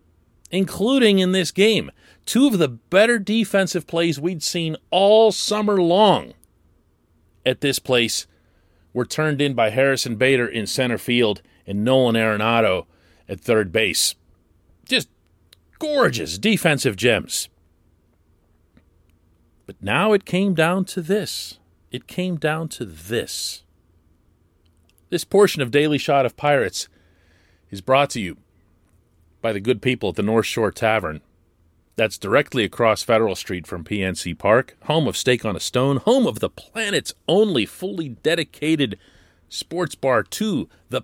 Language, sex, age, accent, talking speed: English, male, 40-59, American, 135 wpm